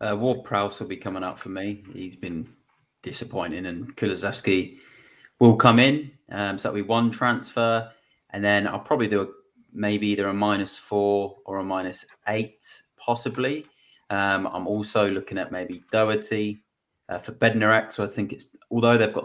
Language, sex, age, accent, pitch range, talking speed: English, male, 30-49, British, 95-110 Hz, 175 wpm